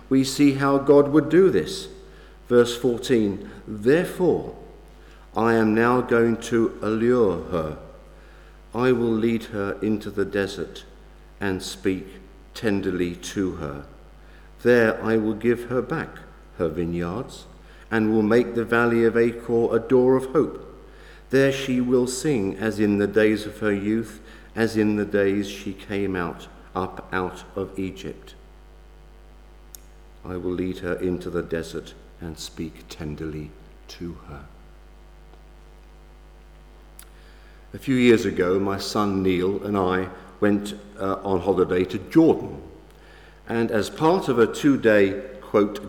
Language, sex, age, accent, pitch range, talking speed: English, male, 50-69, British, 90-120 Hz, 135 wpm